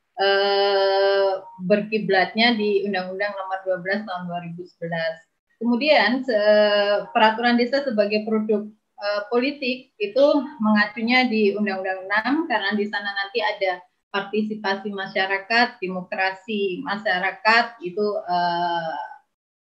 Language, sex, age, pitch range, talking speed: Indonesian, female, 20-39, 185-225 Hz, 90 wpm